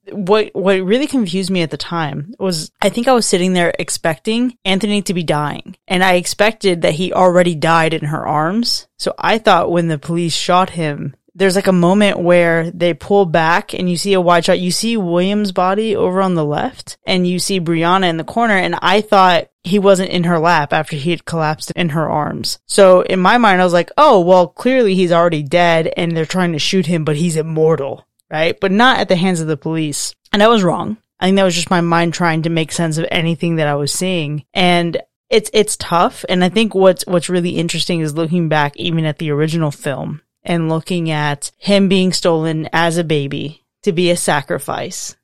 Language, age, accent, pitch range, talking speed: English, 20-39, American, 160-190 Hz, 220 wpm